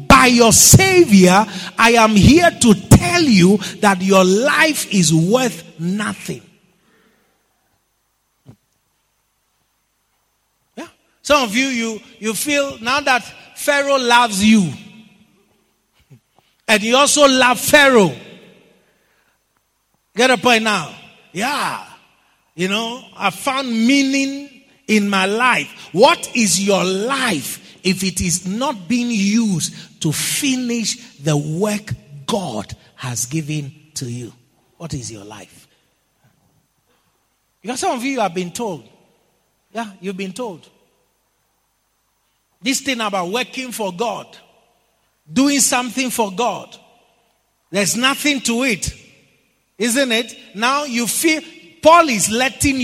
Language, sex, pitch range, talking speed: English, male, 185-255 Hz, 110 wpm